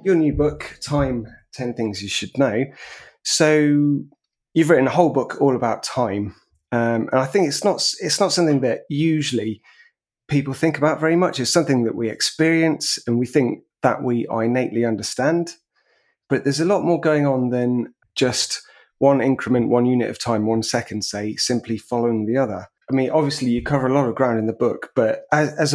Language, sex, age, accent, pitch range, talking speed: English, male, 30-49, British, 115-145 Hz, 195 wpm